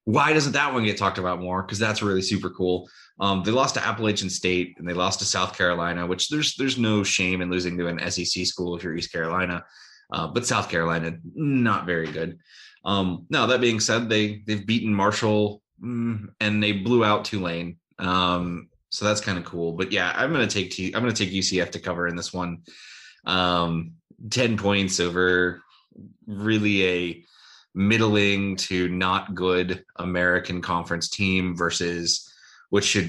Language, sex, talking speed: English, male, 175 wpm